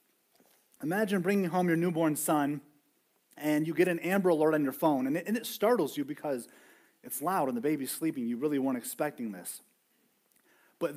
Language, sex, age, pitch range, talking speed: English, male, 30-49, 145-180 Hz, 180 wpm